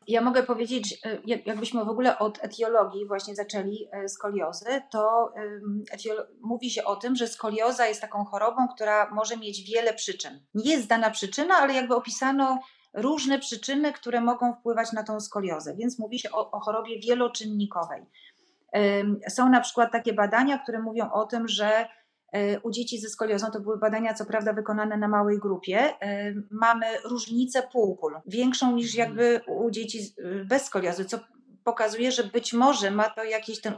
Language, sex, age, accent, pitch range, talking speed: Polish, female, 30-49, native, 205-235 Hz, 160 wpm